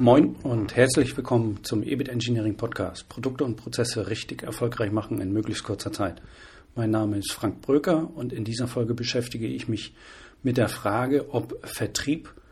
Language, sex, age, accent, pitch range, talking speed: German, male, 40-59, German, 110-130 Hz, 160 wpm